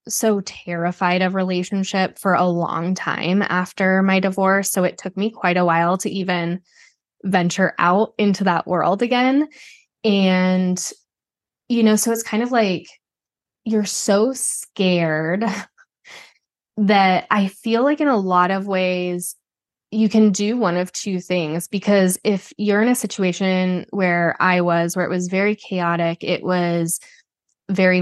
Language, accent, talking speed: English, American, 150 wpm